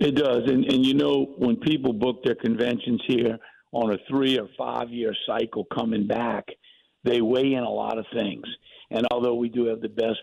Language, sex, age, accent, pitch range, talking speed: English, male, 50-69, American, 120-145 Hz, 205 wpm